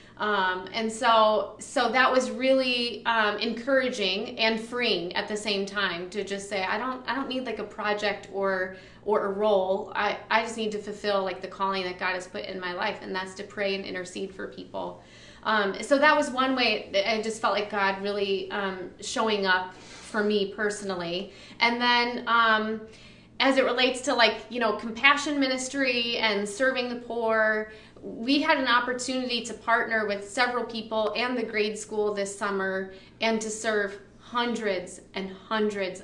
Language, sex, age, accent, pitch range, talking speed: English, female, 30-49, American, 200-240 Hz, 185 wpm